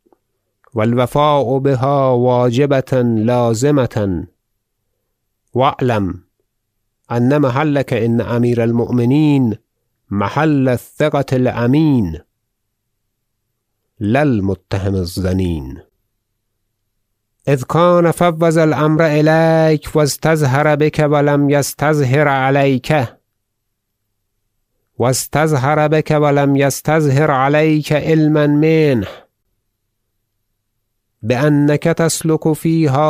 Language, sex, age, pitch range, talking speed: Persian, male, 50-69, 105-140 Hz, 65 wpm